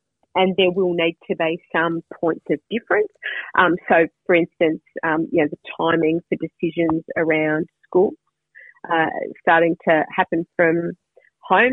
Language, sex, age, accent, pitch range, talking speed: English, female, 40-59, Australian, 160-185 Hz, 150 wpm